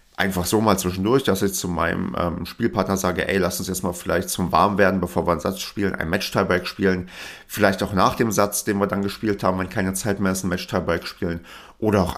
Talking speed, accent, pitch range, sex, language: 235 wpm, German, 90-100 Hz, male, German